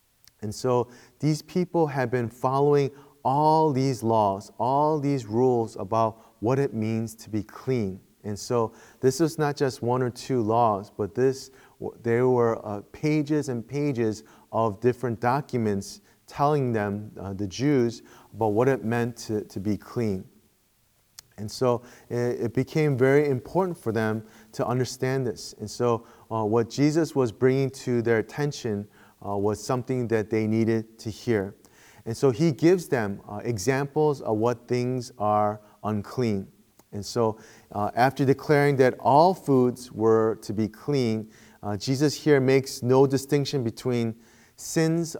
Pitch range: 110-135 Hz